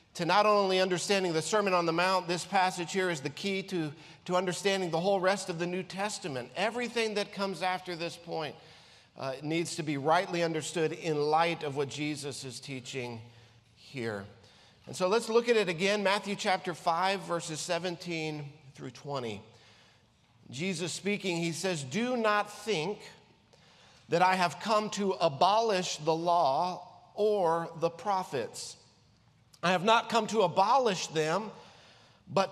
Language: English